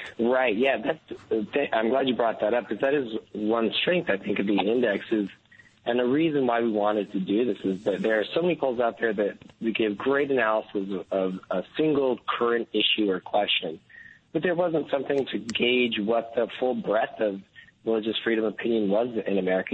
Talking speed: 200 wpm